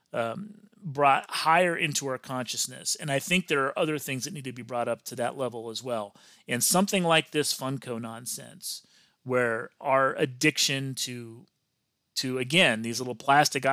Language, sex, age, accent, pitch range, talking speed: English, male, 30-49, American, 125-155 Hz, 170 wpm